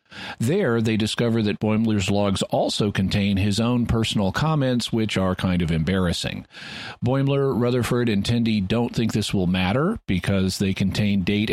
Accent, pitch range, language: American, 100-120 Hz, English